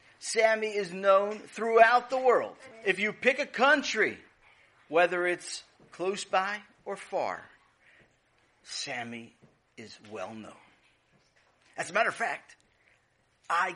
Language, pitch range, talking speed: English, 155-225 Hz, 115 wpm